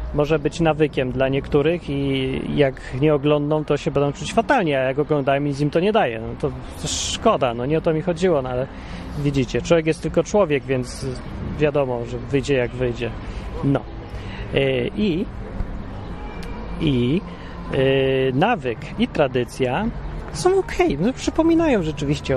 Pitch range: 135-185 Hz